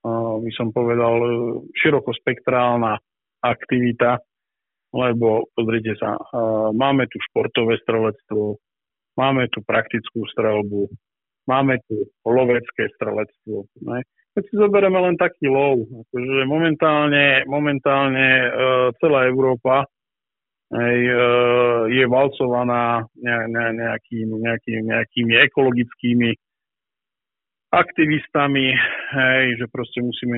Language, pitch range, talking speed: Slovak, 115-130 Hz, 100 wpm